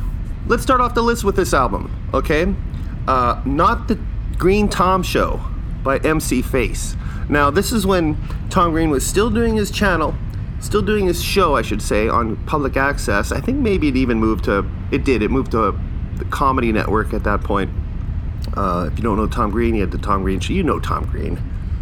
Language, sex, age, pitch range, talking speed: English, male, 30-49, 100-130 Hz, 205 wpm